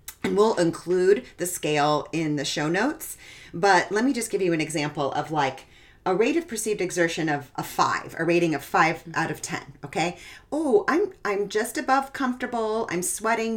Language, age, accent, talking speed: English, 40-59, American, 190 wpm